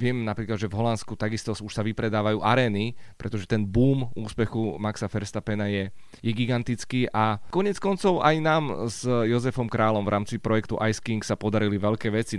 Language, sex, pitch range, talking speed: Slovak, male, 110-125 Hz, 175 wpm